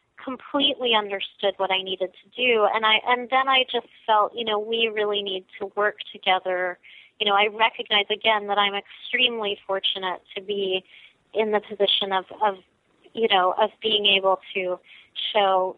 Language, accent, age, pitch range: English, American, 30-49, 195-225 Hz